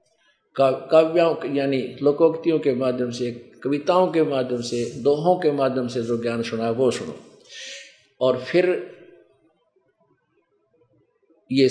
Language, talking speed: Hindi, 115 wpm